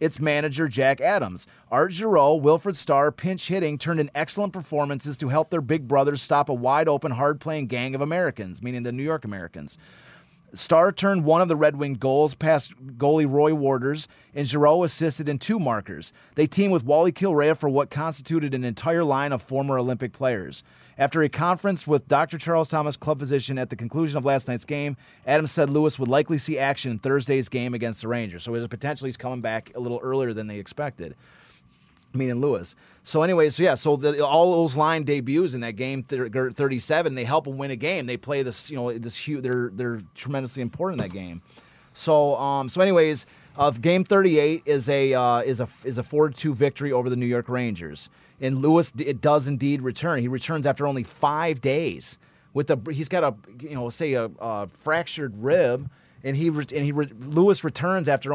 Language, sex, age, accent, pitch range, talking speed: English, male, 30-49, American, 125-155 Hz, 200 wpm